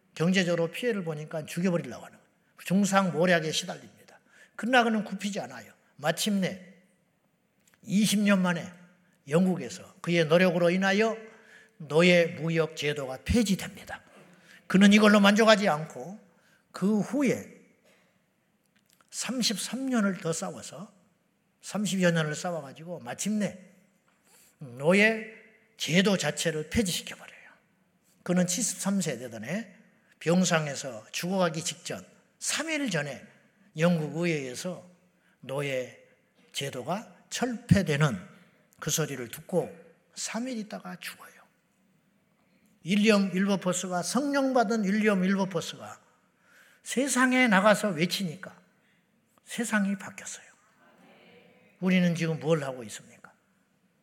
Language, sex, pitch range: Korean, male, 170-215 Hz